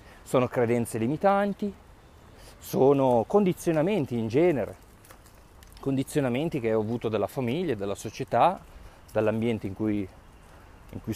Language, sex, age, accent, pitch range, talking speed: Italian, male, 30-49, native, 95-135 Hz, 100 wpm